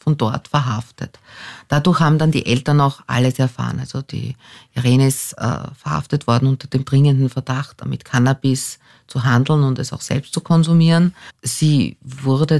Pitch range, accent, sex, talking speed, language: 145-175 Hz, Austrian, female, 160 wpm, German